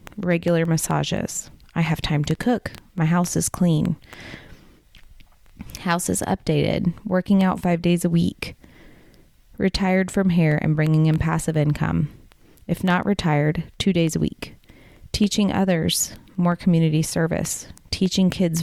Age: 30-49